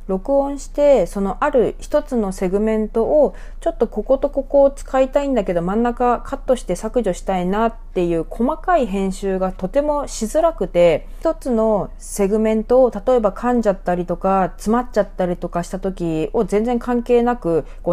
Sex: female